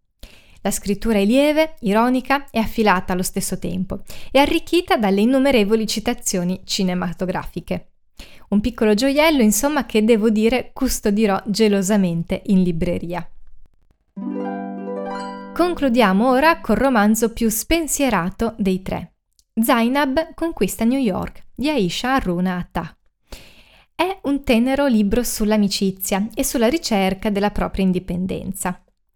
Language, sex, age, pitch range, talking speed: Italian, female, 20-39, 190-265 Hz, 110 wpm